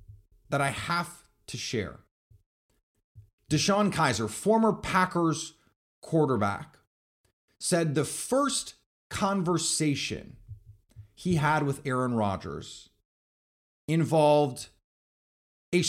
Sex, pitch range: male, 105-175 Hz